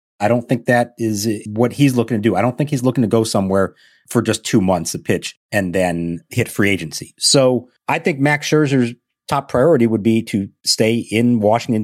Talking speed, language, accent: 215 wpm, English, American